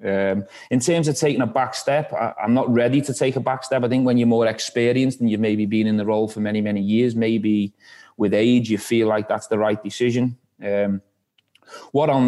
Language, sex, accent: English, male, British